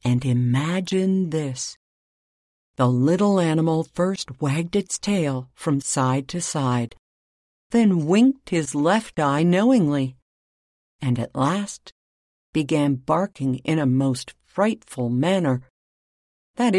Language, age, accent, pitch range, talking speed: English, 60-79, American, 125-180 Hz, 110 wpm